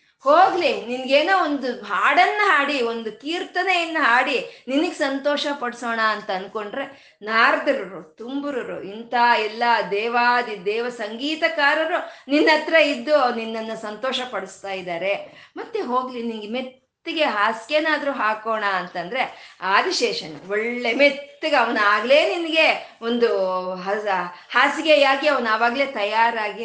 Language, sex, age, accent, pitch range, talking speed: Kannada, female, 20-39, native, 205-290 Hz, 95 wpm